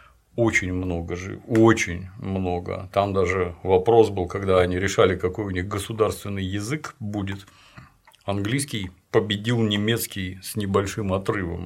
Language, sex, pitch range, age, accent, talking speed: Russian, male, 95-115 Hz, 50-69, native, 125 wpm